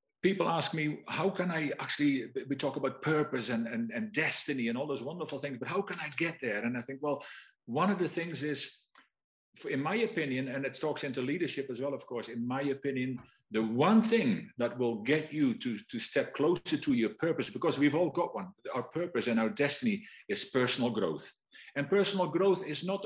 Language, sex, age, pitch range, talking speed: English, male, 50-69, 135-180 Hz, 215 wpm